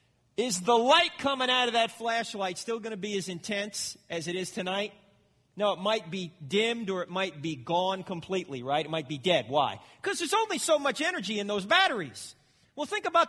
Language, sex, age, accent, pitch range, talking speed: English, male, 40-59, American, 165-215 Hz, 210 wpm